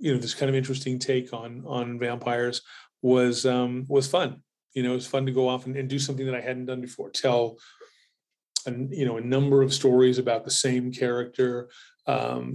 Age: 30-49